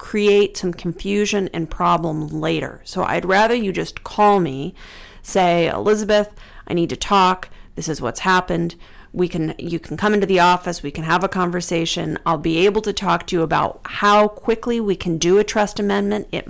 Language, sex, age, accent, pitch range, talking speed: English, female, 40-59, American, 165-205 Hz, 195 wpm